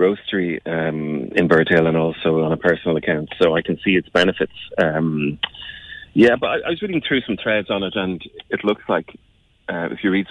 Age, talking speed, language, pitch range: 30-49, 210 wpm, English, 80-95 Hz